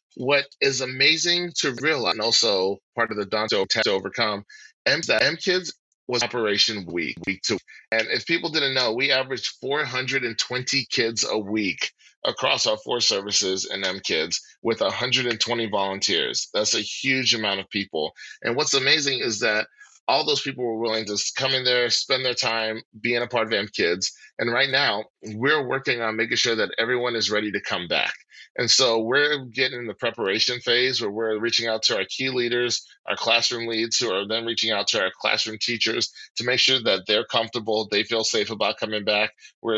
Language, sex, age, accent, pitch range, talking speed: English, male, 30-49, American, 110-130 Hz, 195 wpm